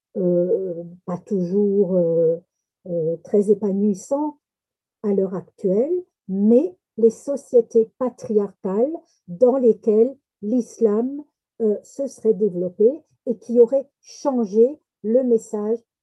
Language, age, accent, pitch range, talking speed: French, 60-79, French, 200-265 Hz, 95 wpm